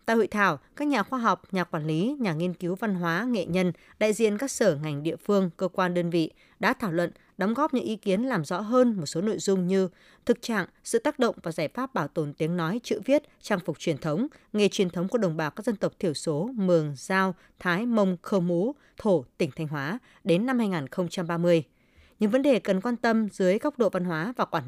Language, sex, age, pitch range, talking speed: Vietnamese, female, 20-39, 170-230 Hz, 240 wpm